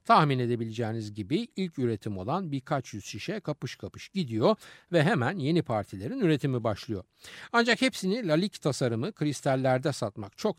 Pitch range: 115-190 Hz